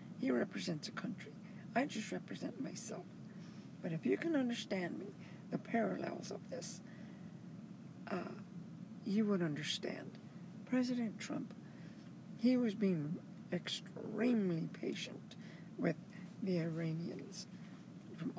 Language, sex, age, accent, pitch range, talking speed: English, female, 60-79, American, 180-215 Hz, 110 wpm